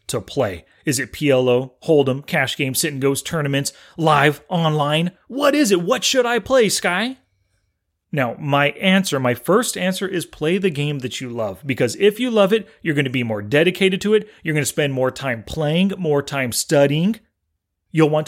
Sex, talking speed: male, 195 wpm